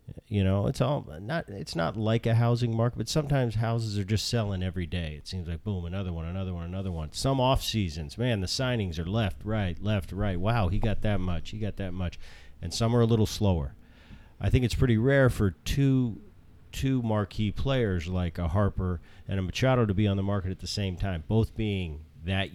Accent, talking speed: American, 220 wpm